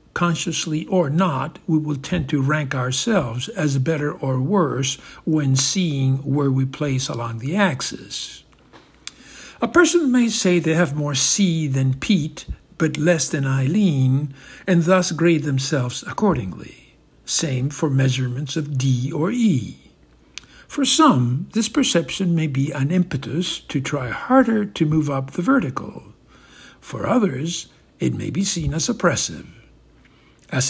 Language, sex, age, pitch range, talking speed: English, male, 60-79, 135-195 Hz, 140 wpm